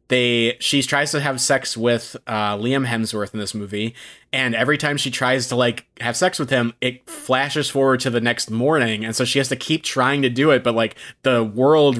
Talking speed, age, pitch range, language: 225 wpm, 20-39, 120-140 Hz, English